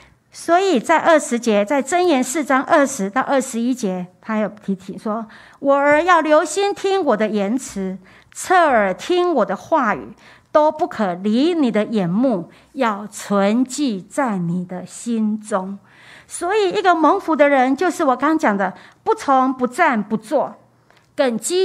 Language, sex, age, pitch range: Chinese, female, 50-69, 205-295 Hz